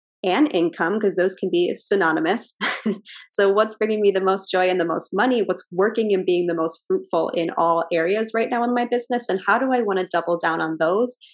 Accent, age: American, 10-29